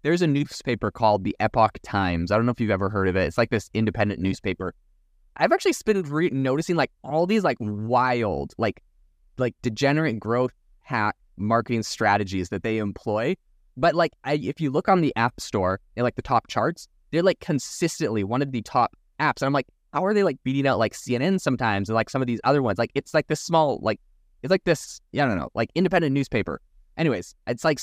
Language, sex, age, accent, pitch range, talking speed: English, male, 20-39, American, 100-140 Hz, 210 wpm